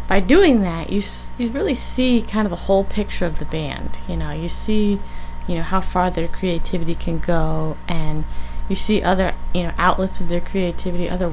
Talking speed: 205 wpm